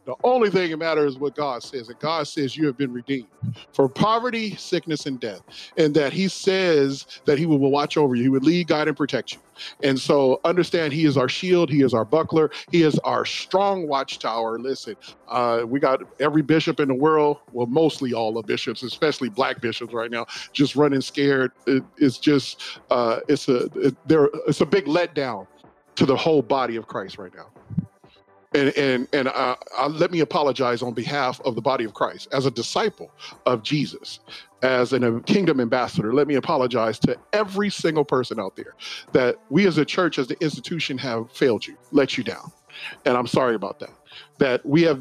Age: 40-59